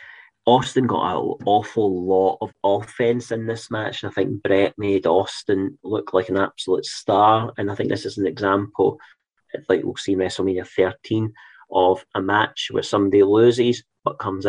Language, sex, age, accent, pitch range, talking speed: English, male, 30-49, British, 105-125 Hz, 180 wpm